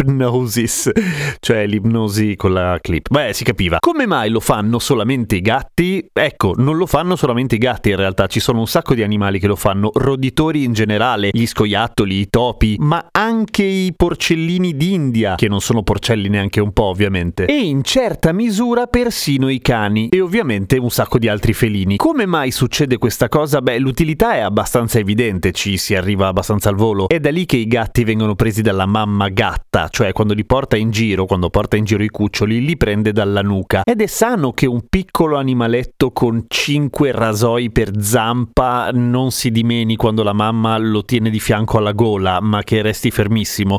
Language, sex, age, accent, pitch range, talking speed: Italian, male, 30-49, native, 105-140 Hz, 190 wpm